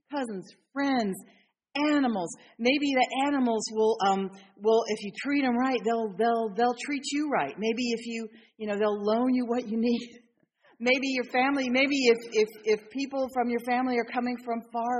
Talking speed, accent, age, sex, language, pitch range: 185 wpm, American, 40-59, female, English, 210-245 Hz